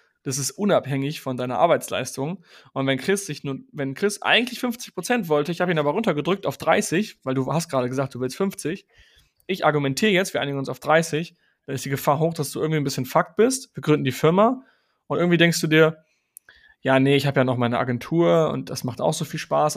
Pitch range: 135-175 Hz